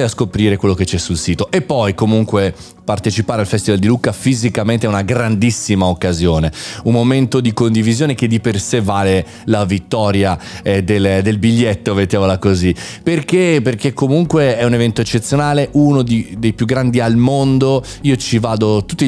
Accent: native